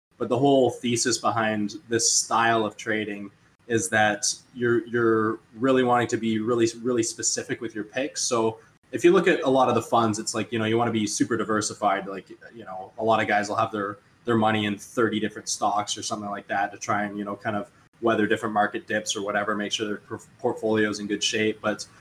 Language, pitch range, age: English, 105-115 Hz, 20-39